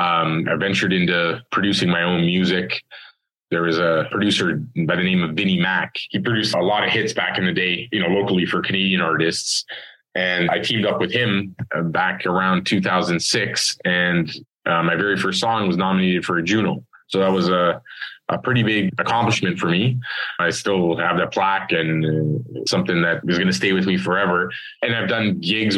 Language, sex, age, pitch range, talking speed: English, male, 20-39, 90-100 Hz, 190 wpm